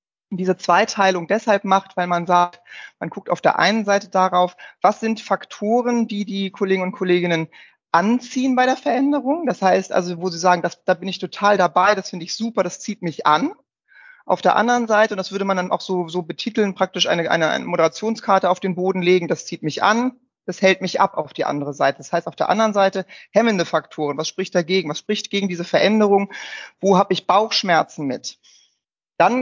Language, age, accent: German, 30-49, German